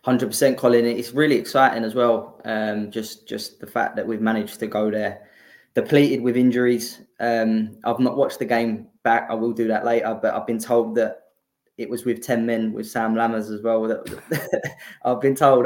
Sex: male